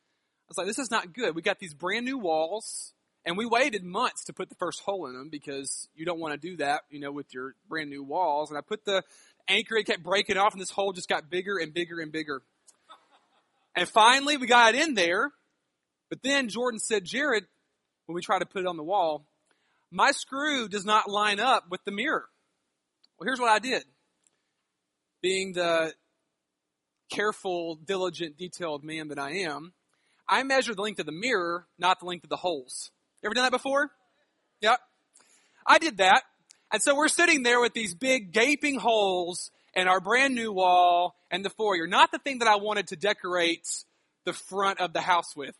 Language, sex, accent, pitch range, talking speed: English, male, American, 170-225 Hz, 200 wpm